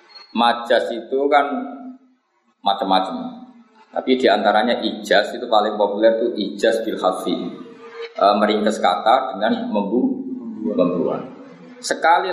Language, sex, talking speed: Malay, male, 100 wpm